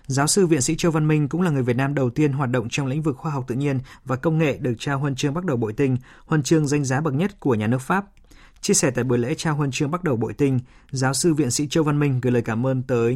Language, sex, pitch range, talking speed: Vietnamese, male, 120-155 Hz, 310 wpm